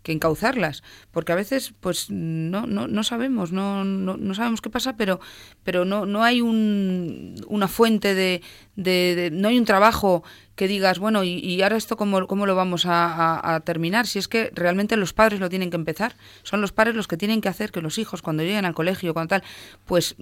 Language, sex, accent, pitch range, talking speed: Spanish, female, Spanish, 165-205 Hz, 225 wpm